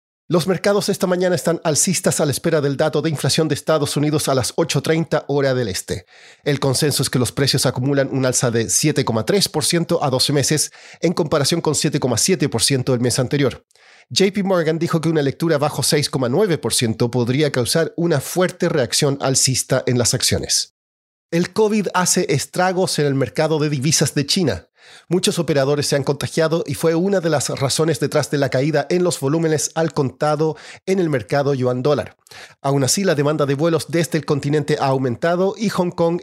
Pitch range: 135-170 Hz